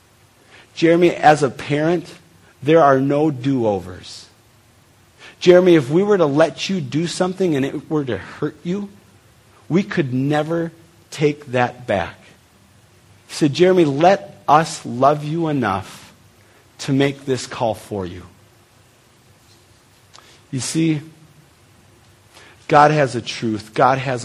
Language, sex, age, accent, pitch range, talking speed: English, male, 40-59, American, 115-165 Hz, 125 wpm